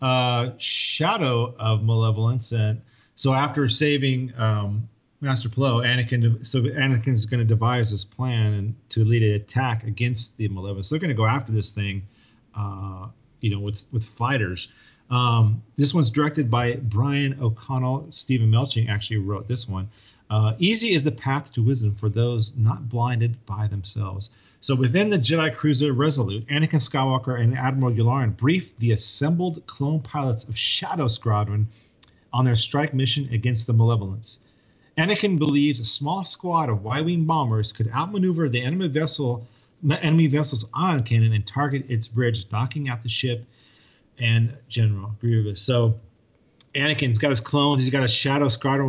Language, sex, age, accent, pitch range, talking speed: English, male, 40-59, American, 110-140 Hz, 155 wpm